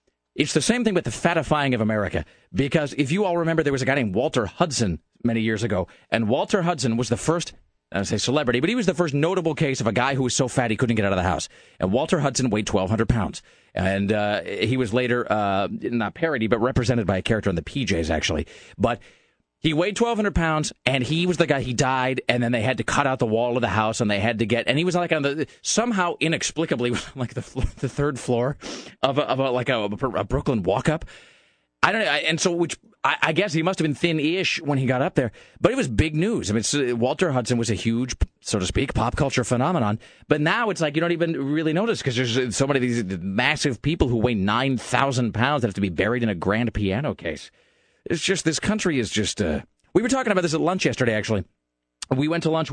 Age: 30-49